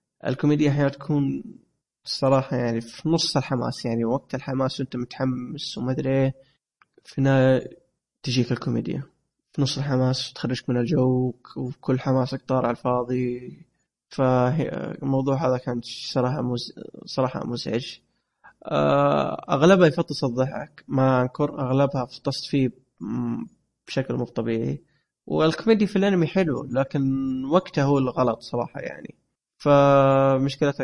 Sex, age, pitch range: male, 20-39, 125-140 Hz